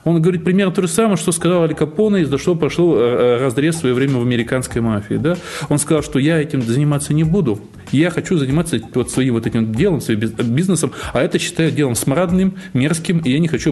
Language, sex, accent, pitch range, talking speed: Russian, male, native, 115-170 Hz, 215 wpm